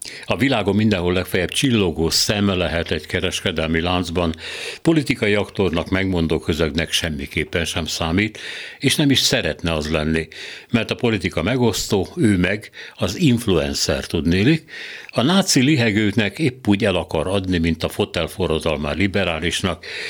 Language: Hungarian